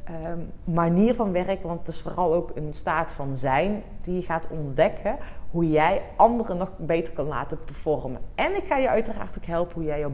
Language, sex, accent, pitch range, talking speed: Dutch, female, Dutch, 165-220 Hz, 205 wpm